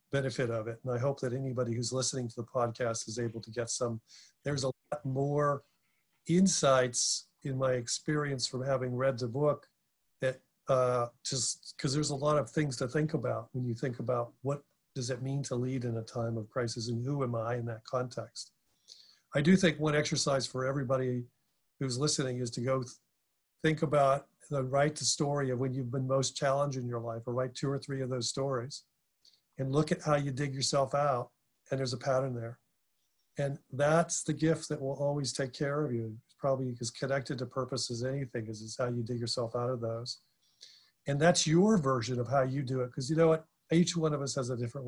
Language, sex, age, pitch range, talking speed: English, male, 50-69, 125-145 Hz, 215 wpm